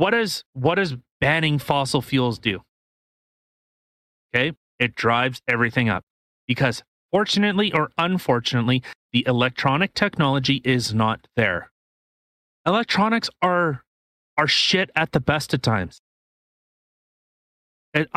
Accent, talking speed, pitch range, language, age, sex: American, 110 wpm, 120-160 Hz, English, 30-49, male